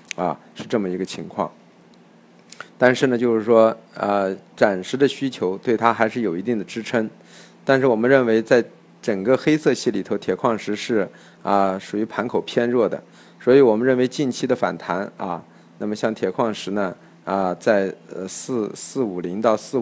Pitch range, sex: 100-120 Hz, male